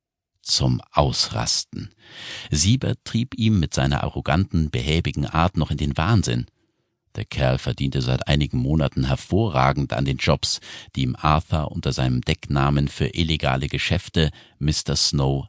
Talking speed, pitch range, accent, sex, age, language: 135 wpm, 75-110 Hz, German, male, 50-69, German